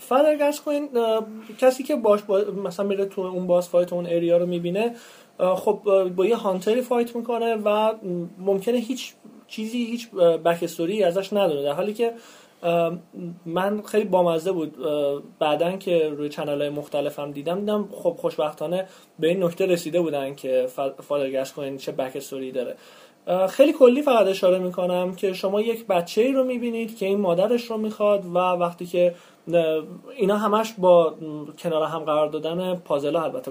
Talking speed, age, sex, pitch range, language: 150 wpm, 30-49, male, 170-220 Hz, Persian